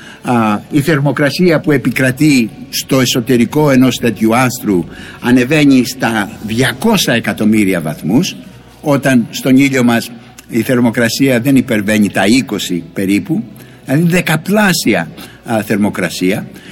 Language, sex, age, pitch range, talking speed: Greek, male, 60-79, 125-180 Hz, 100 wpm